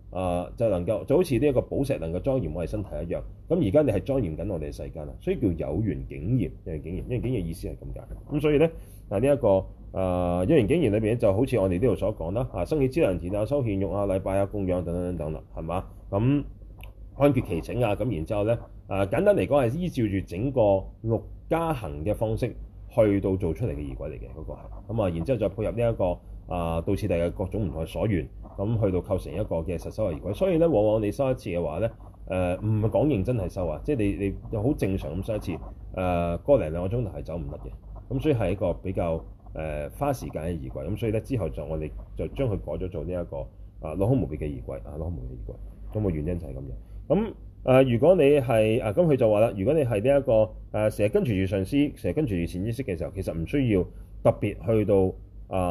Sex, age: male, 30-49